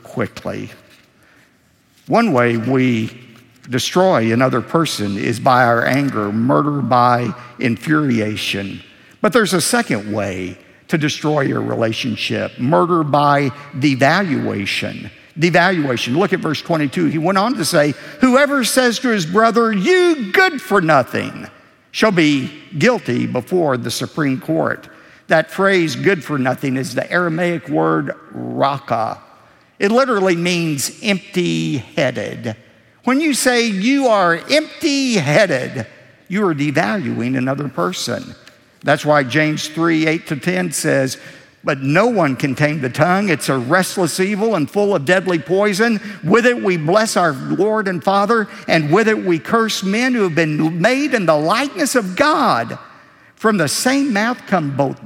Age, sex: 60-79, male